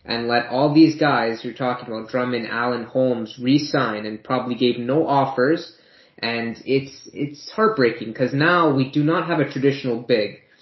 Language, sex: English, male